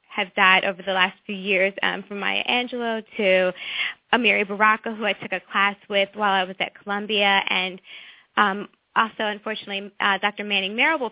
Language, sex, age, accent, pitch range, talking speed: English, female, 10-29, American, 195-225 Hz, 180 wpm